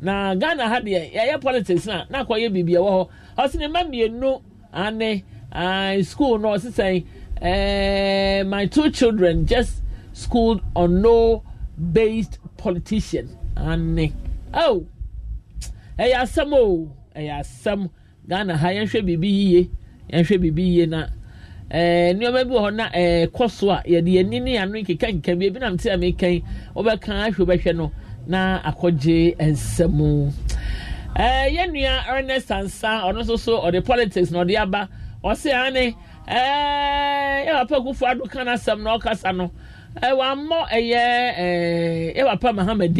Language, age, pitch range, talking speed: English, 50-69, 175-235 Hz, 155 wpm